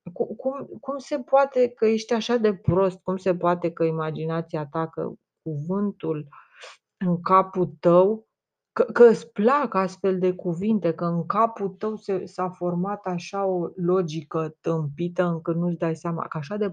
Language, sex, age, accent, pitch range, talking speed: Romanian, female, 30-49, native, 175-220 Hz, 165 wpm